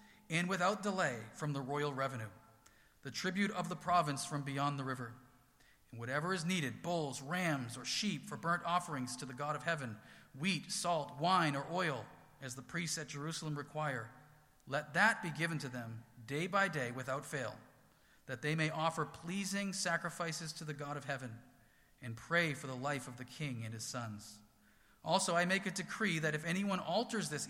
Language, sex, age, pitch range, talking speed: English, male, 40-59, 130-170 Hz, 190 wpm